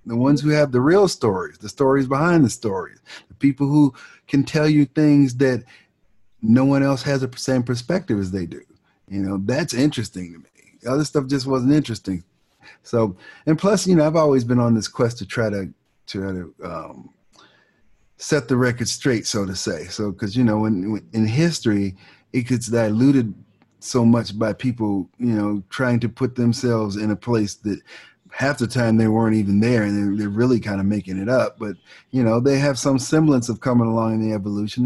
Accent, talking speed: American, 200 wpm